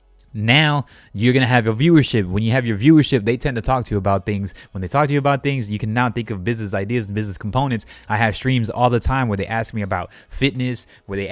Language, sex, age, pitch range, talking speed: English, male, 20-39, 100-130 Hz, 270 wpm